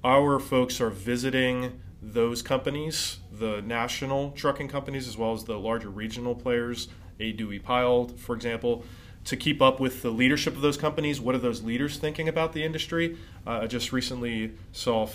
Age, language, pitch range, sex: 30-49, English, 110-130 Hz, male